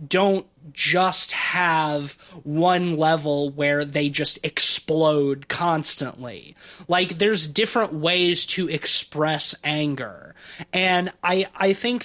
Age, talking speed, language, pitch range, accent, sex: 20-39, 105 wpm, English, 150-195 Hz, American, male